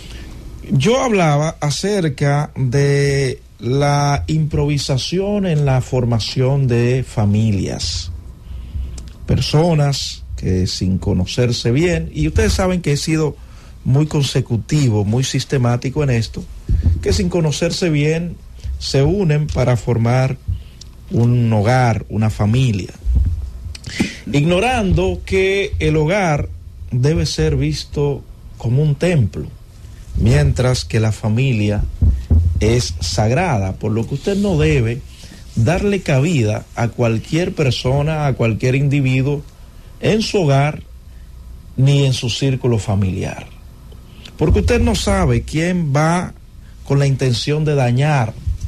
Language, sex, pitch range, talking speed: Spanish, male, 100-150 Hz, 110 wpm